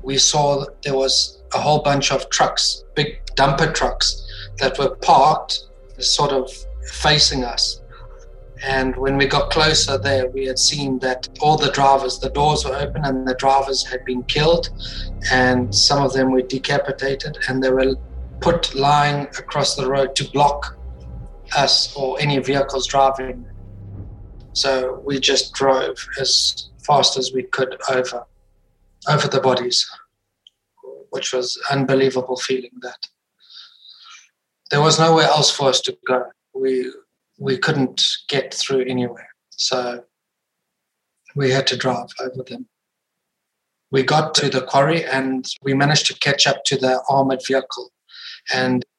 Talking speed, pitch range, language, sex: 145 wpm, 130-140 Hz, English, male